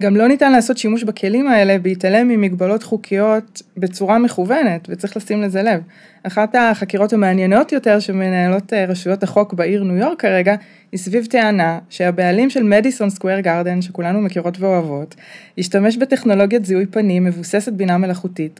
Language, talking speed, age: Hebrew, 145 wpm, 20-39